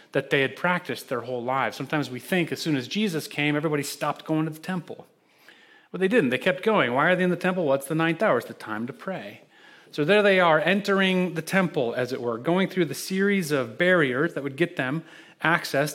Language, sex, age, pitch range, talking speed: English, male, 30-49, 145-195 Hz, 235 wpm